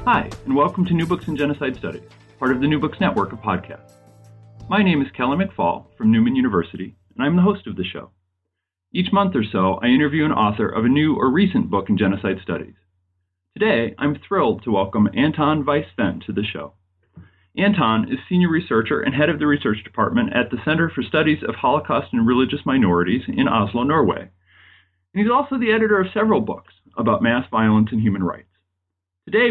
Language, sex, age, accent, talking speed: English, male, 40-59, American, 195 wpm